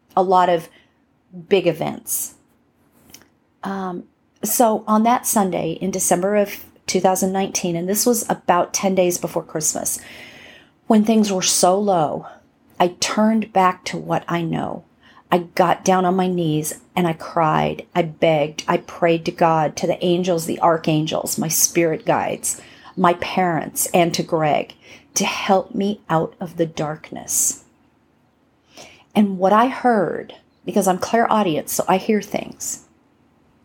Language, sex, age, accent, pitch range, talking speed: English, female, 40-59, American, 170-205 Hz, 145 wpm